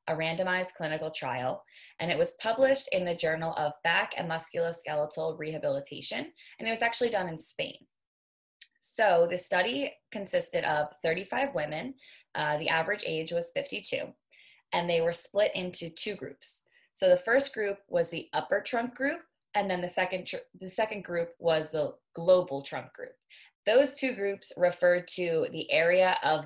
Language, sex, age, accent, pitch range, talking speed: English, female, 20-39, American, 160-210 Hz, 165 wpm